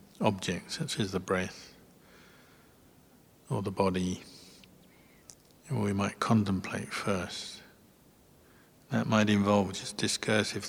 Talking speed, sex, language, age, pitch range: 95 wpm, male, English, 50-69, 95-110 Hz